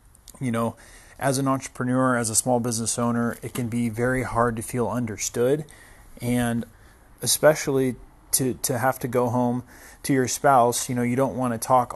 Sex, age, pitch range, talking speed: male, 30-49, 120-140 Hz, 180 wpm